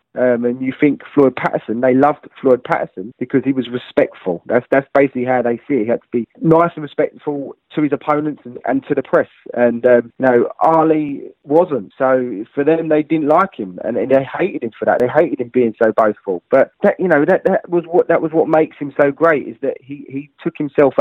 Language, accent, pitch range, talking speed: English, British, 130-160 Hz, 235 wpm